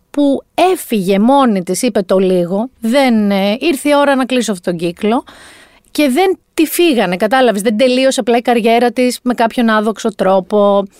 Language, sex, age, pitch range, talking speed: Greek, female, 30-49, 200-275 Hz, 170 wpm